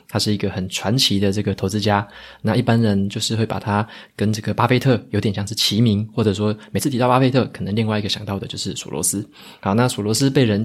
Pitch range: 100-120 Hz